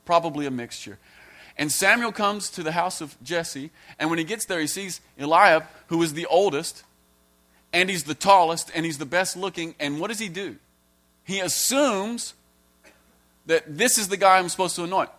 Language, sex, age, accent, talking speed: English, male, 40-59, American, 190 wpm